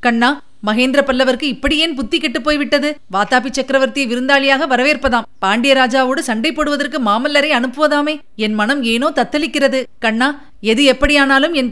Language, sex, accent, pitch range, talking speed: Tamil, female, native, 200-280 Hz, 125 wpm